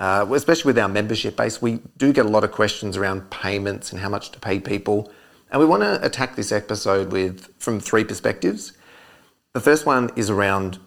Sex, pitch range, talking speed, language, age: male, 100-125 Hz, 205 wpm, English, 40-59